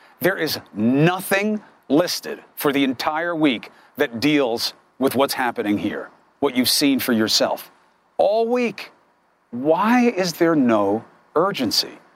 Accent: American